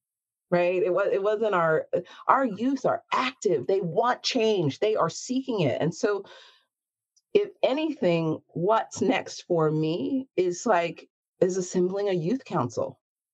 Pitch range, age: 165-260 Hz, 40-59